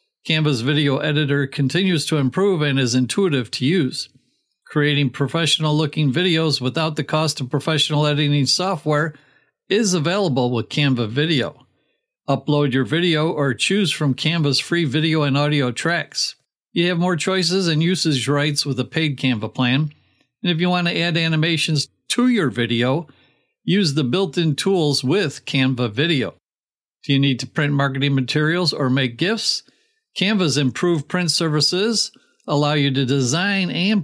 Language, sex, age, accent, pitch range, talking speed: English, male, 50-69, American, 140-185 Hz, 150 wpm